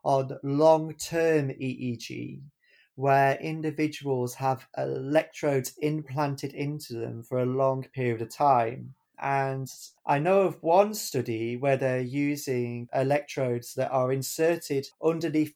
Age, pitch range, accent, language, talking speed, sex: 30-49, 125-150 Hz, British, English, 115 wpm, male